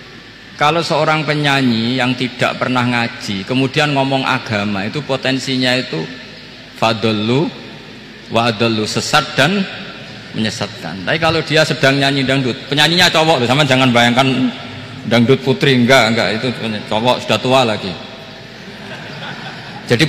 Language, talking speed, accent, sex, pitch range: Indonesian, 120 wpm, native, male, 120-155 Hz